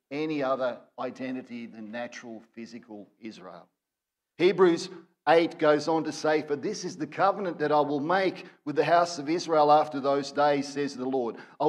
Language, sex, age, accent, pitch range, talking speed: English, male, 50-69, Australian, 130-160 Hz, 175 wpm